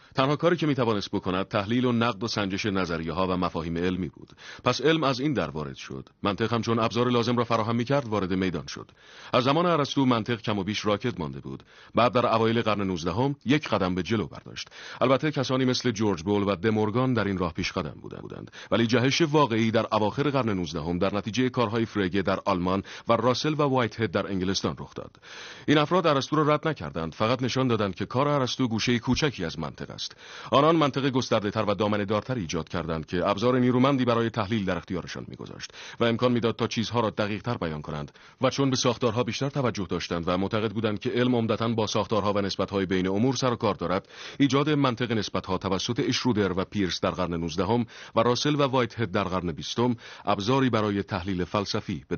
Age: 40-59